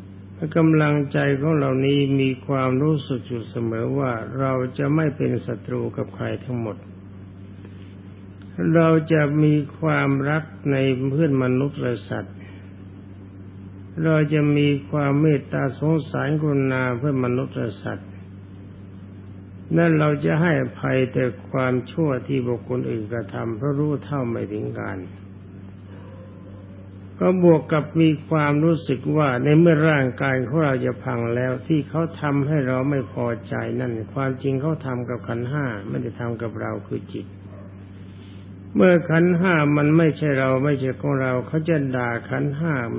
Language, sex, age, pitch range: Thai, male, 60-79, 100-145 Hz